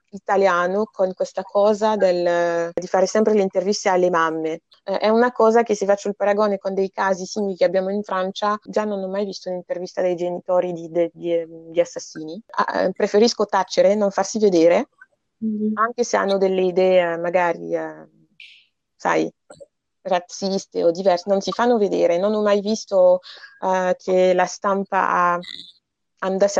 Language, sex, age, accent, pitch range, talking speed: Italian, female, 30-49, native, 180-215 Hz, 160 wpm